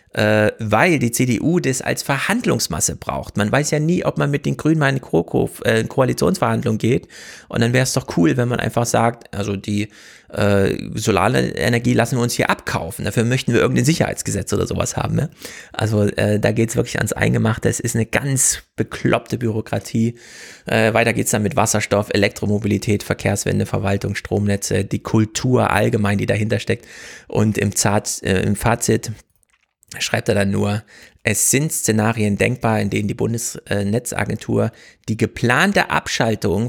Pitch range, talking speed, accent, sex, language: 105-120 Hz, 155 wpm, German, male, German